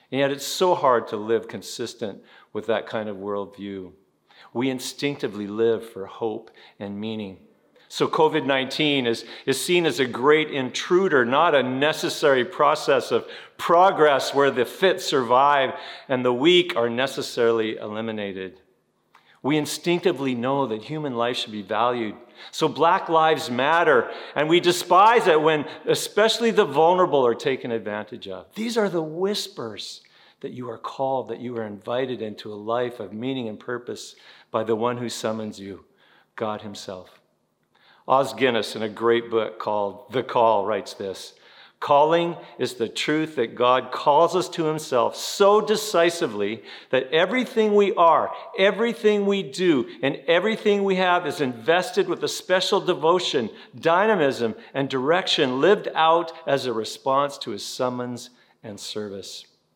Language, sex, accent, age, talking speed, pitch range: English, male, American, 50-69, 150 wpm, 115-175 Hz